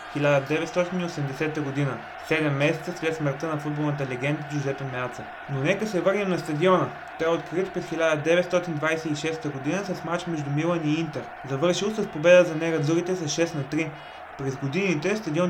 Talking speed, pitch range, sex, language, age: 160 wpm, 145-175 Hz, male, Bulgarian, 20-39